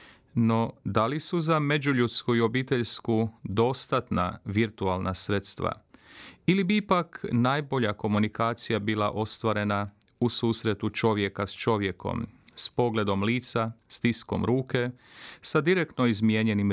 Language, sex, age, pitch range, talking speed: Croatian, male, 40-59, 100-125 Hz, 110 wpm